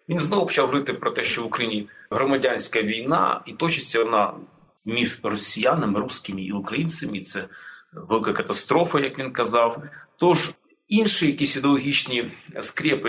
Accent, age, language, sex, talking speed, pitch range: native, 40-59, Ukrainian, male, 140 wpm, 135-175 Hz